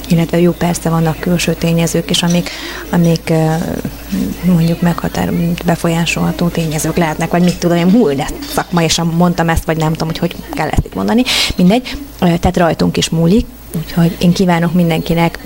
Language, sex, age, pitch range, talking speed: Hungarian, female, 20-39, 165-175 Hz, 160 wpm